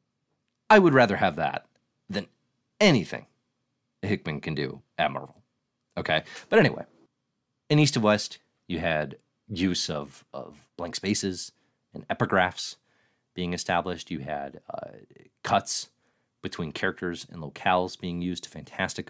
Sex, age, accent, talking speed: male, 30-49, American, 130 wpm